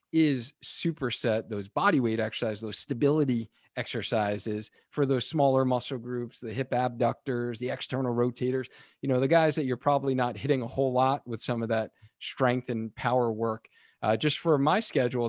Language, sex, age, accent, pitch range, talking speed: English, male, 40-59, American, 115-135 Hz, 175 wpm